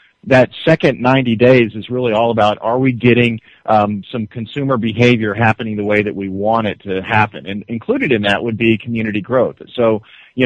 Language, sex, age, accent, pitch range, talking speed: English, male, 40-59, American, 105-125 Hz, 195 wpm